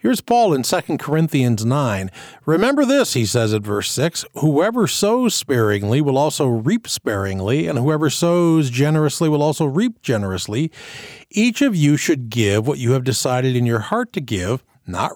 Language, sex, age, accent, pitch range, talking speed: English, male, 50-69, American, 120-160 Hz, 170 wpm